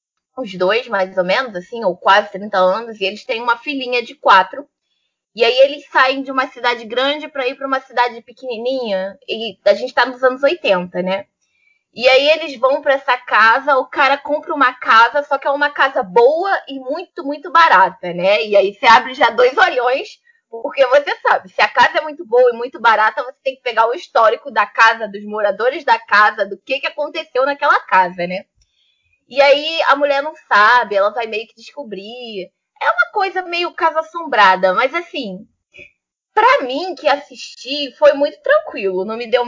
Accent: Brazilian